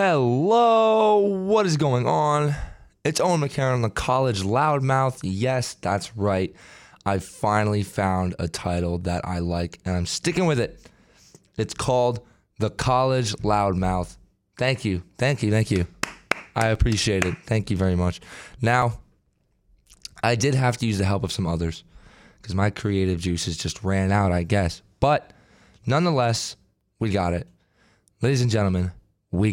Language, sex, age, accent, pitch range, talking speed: English, male, 20-39, American, 95-125 Hz, 150 wpm